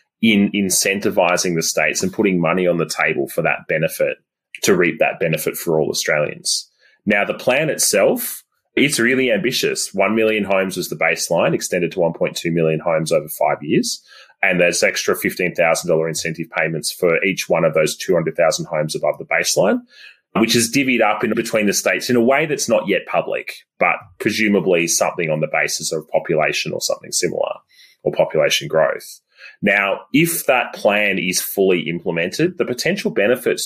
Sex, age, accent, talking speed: male, 30-49, Australian, 170 wpm